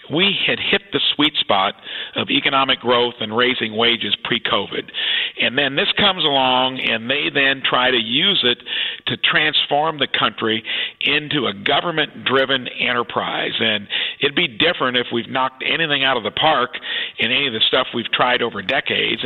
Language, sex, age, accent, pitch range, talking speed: English, male, 50-69, American, 120-145 Hz, 170 wpm